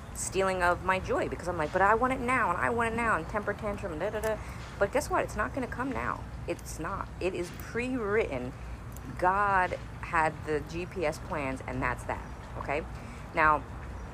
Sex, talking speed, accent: female, 195 wpm, American